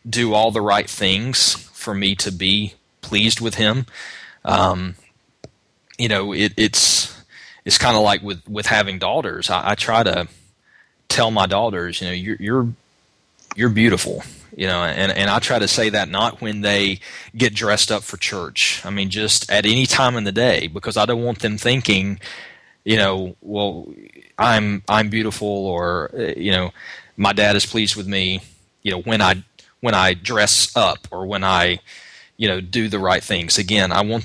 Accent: American